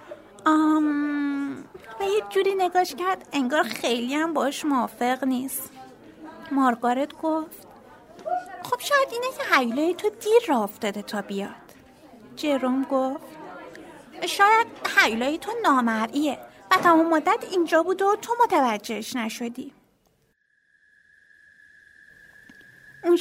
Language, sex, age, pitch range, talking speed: Persian, female, 30-49, 265-370 Hz, 105 wpm